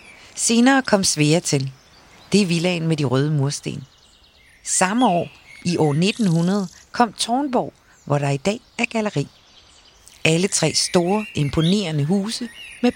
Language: Danish